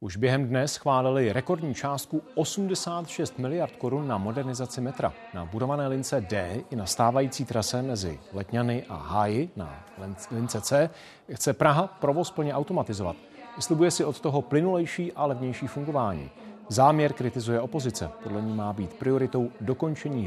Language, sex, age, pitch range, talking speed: Czech, male, 40-59, 120-155 Hz, 145 wpm